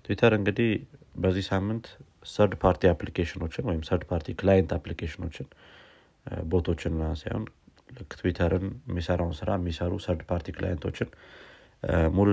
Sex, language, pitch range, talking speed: male, Amharic, 85-95 Hz, 110 wpm